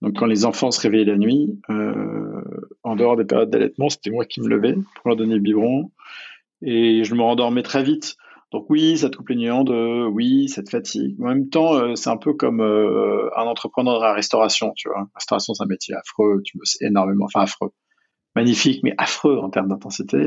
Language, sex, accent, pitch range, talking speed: French, male, French, 110-140 Hz, 215 wpm